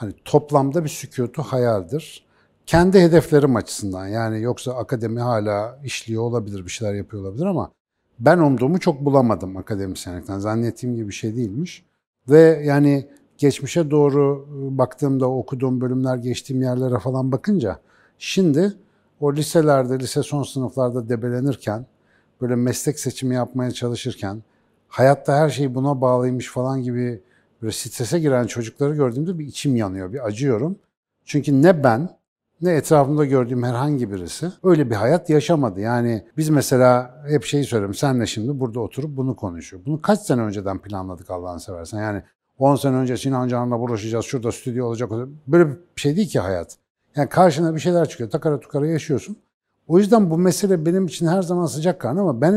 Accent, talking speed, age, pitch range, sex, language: native, 155 wpm, 60-79, 120-150 Hz, male, Turkish